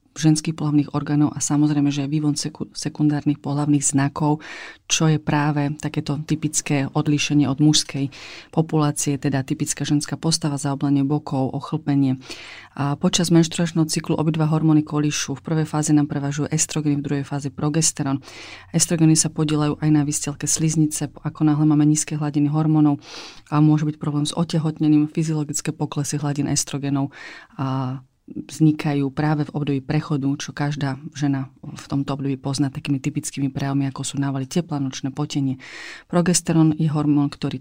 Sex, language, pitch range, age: female, Czech, 140-155 Hz, 40-59